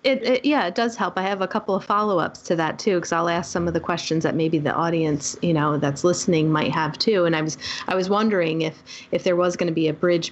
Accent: American